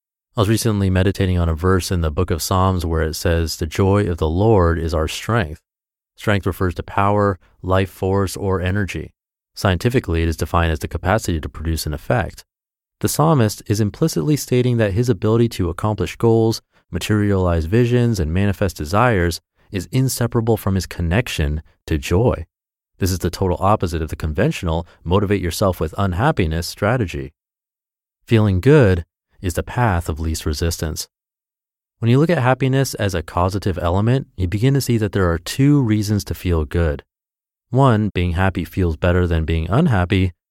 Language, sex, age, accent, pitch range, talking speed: English, male, 30-49, American, 90-115 Hz, 165 wpm